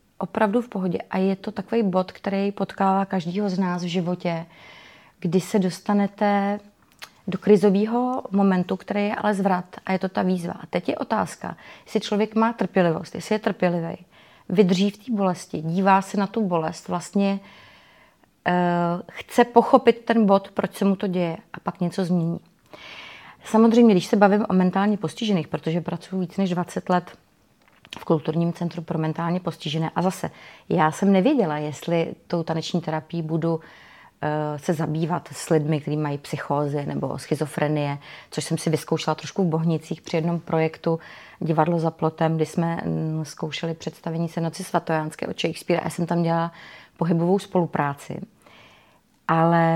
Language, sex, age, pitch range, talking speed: Czech, female, 30-49, 165-200 Hz, 160 wpm